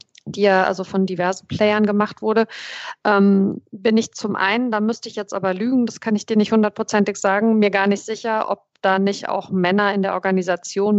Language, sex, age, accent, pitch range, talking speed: German, female, 50-69, German, 185-215 Hz, 210 wpm